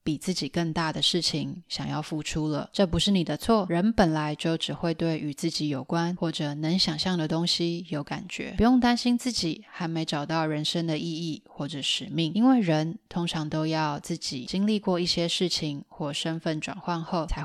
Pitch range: 160-185 Hz